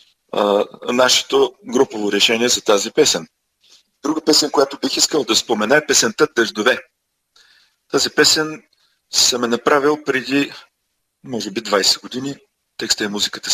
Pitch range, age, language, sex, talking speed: 110-150 Hz, 40-59, Bulgarian, male, 130 wpm